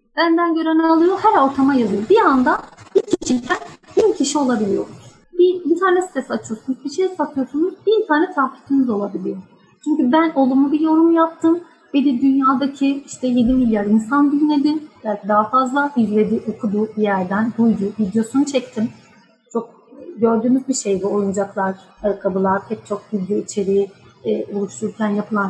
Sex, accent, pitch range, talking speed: female, native, 220-290 Hz, 150 wpm